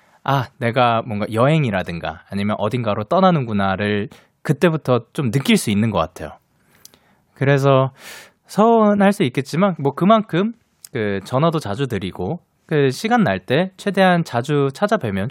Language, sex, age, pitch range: Korean, male, 20-39, 115-175 Hz